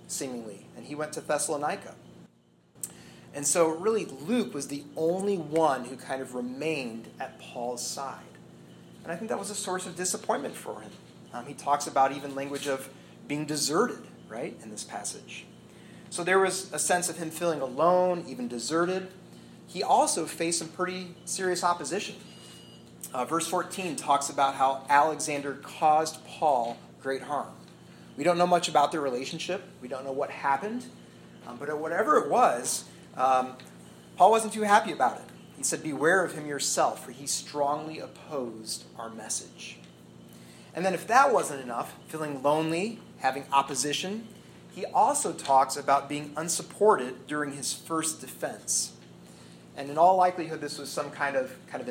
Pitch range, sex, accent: 125-175 Hz, male, American